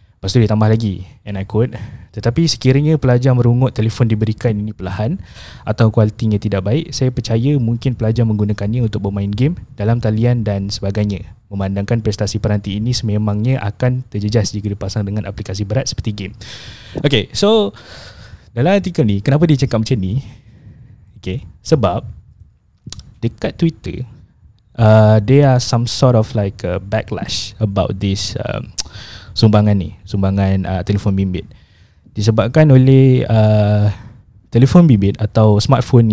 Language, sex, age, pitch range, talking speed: Malay, male, 20-39, 100-120 Hz, 140 wpm